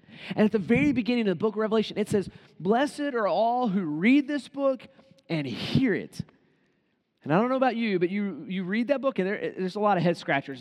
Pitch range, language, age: 175-245 Hz, English, 30-49